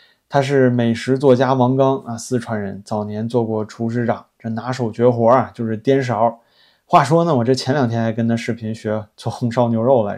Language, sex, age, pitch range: Chinese, male, 20-39, 115-130 Hz